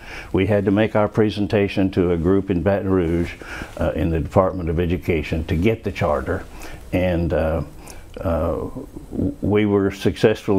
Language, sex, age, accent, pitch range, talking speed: English, male, 60-79, American, 90-105 Hz, 160 wpm